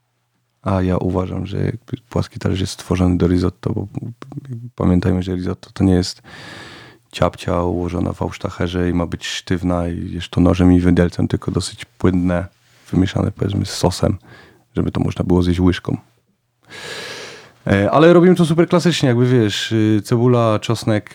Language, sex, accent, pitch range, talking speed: Polish, male, native, 95-120 Hz, 150 wpm